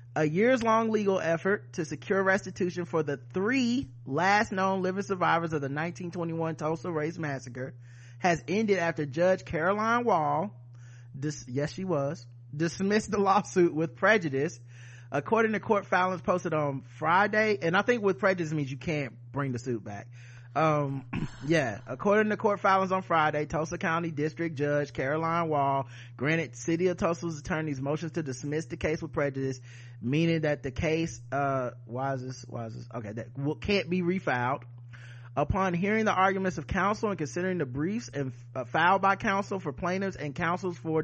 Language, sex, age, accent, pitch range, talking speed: English, male, 30-49, American, 135-185 Hz, 170 wpm